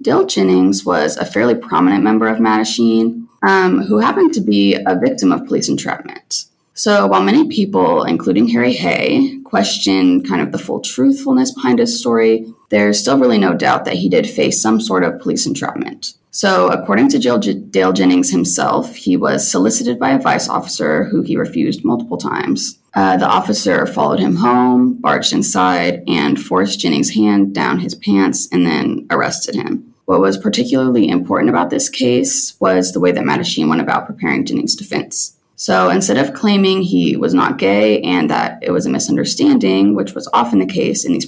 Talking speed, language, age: 180 wpm, English, 20-39